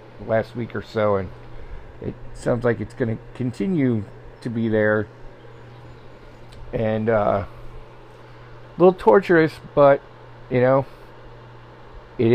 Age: 50-69